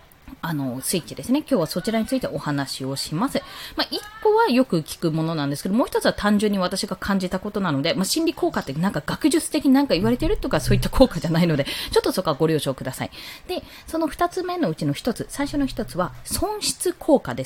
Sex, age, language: female, 20-39, Japanese